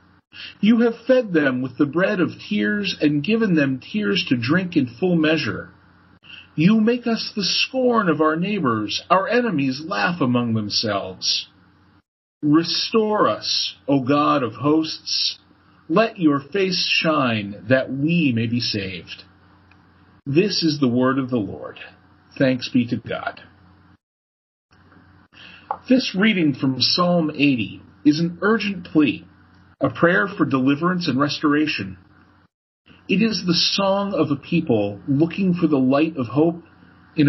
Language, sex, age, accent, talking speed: English, male, 40-59, American, 140 wpm